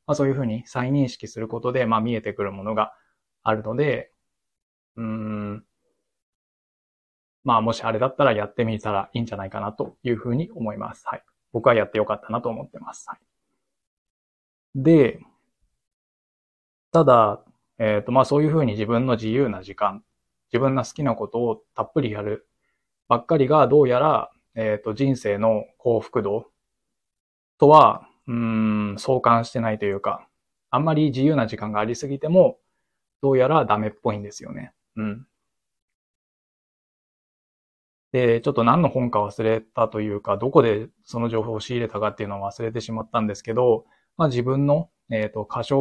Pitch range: 105-135 Hz